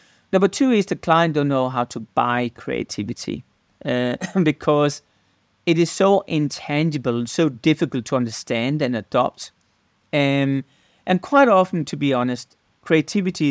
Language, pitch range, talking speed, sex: English, 125-165 Hz, 140 wpm, male